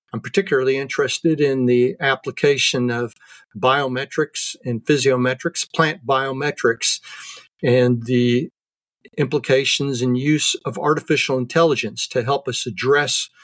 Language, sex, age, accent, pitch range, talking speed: English, male, 50-69, American, 125-150 Hz, 105 wpm